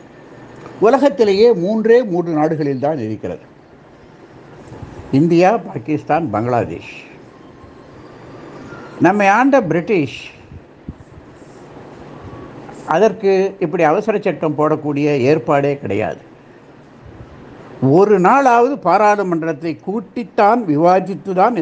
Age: 60-79